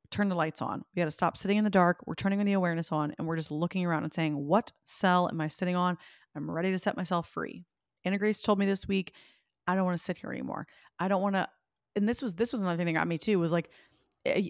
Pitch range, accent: 160-195 Hz, American